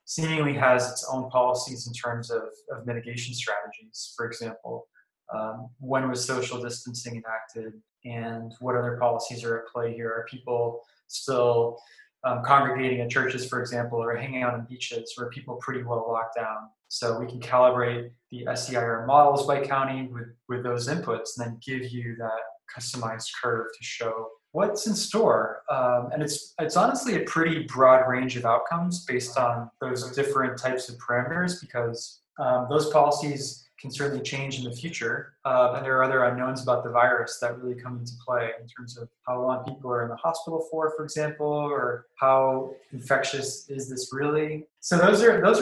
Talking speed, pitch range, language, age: 180 wpm, 120-140 Hz, English, 20-39